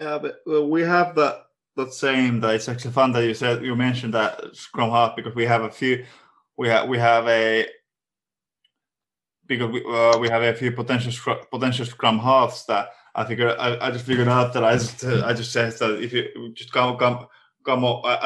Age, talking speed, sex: 20-39, 215 wpm, male